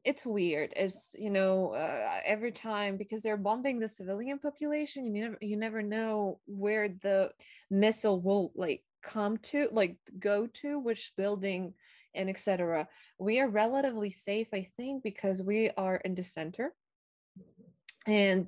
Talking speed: 150 wpm